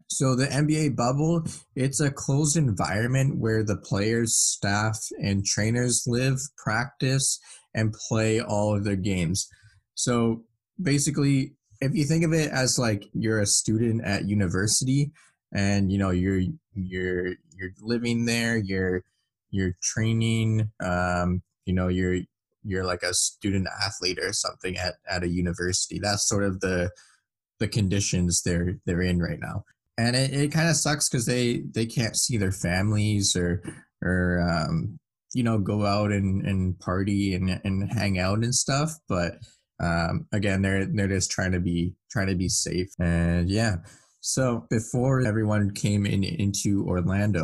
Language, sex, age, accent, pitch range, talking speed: English, male, 20-39, American, 95-120 Hz, 155 wpm